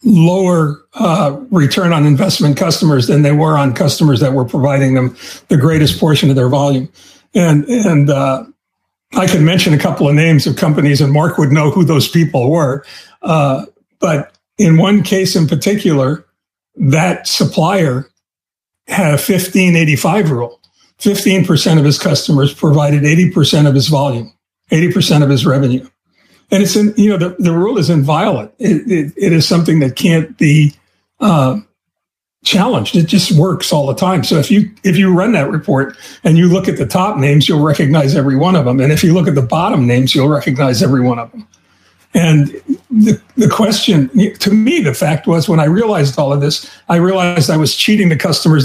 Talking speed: 185 wpm